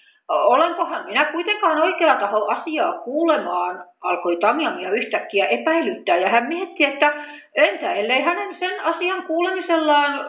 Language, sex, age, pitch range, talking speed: Finnish, female, 50-69, 220-335 Hz, 130 wpm